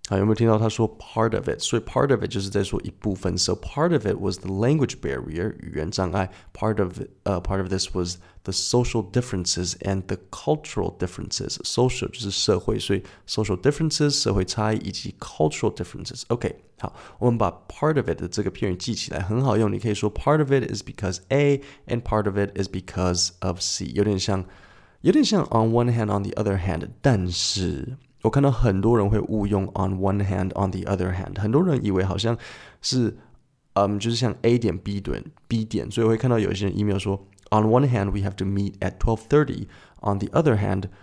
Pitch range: 95-120 Hz